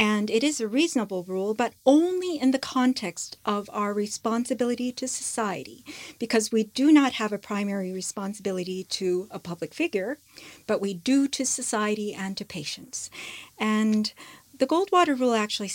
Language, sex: English, female